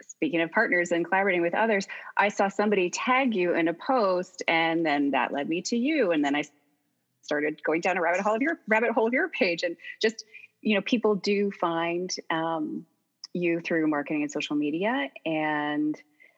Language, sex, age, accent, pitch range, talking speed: English, female, 30-49, American, 155-205 Hz, 195 wpm